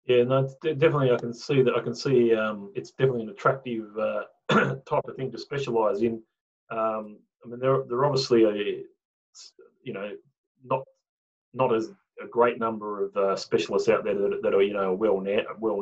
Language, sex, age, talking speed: English, male, 30-49, 200 wpm